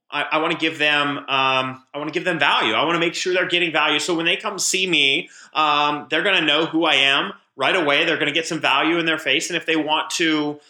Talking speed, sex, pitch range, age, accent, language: 280 wpm, male, 145-165 Hz, 30-49, American, English